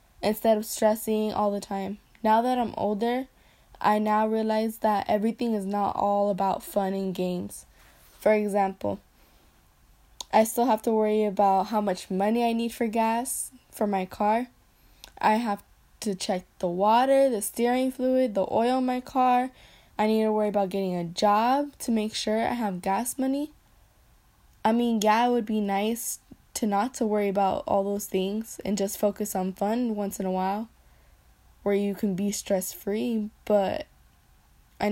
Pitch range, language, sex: 195-230 Hz, English, female